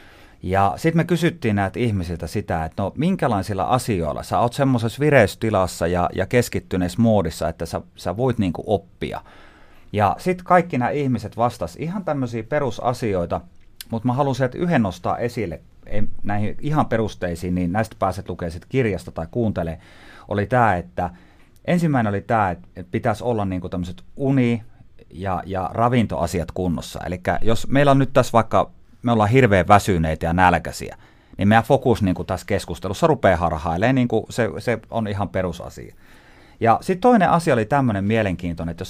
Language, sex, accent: Finnish, male, native